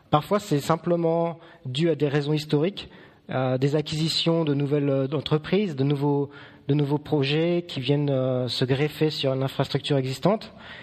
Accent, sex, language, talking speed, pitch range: French, male, French, 150 wpm, 130-155 Hz